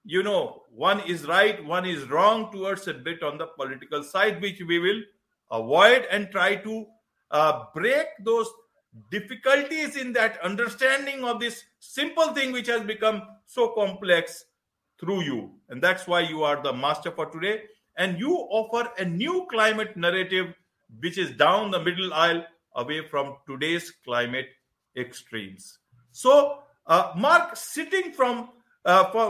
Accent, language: Indian, English